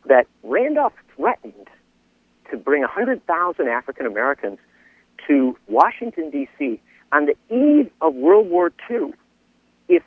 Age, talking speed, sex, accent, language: 50-69, 115 wpm, male, American, English